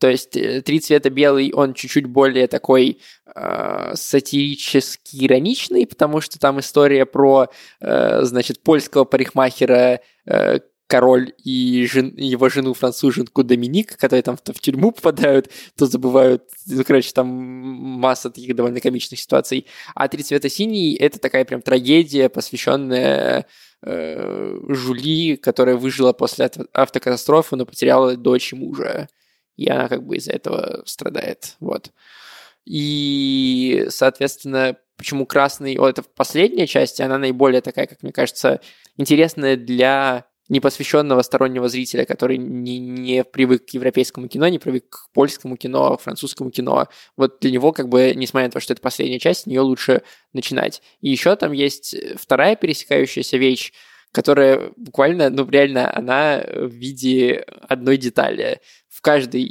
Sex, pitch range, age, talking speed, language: male, 125-140 Hz, 20-39, 140 wpm, Russian